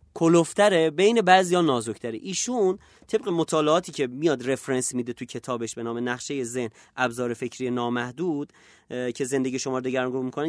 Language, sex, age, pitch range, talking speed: Persian, male, 30-49, 130-190 Hz, 155 wpm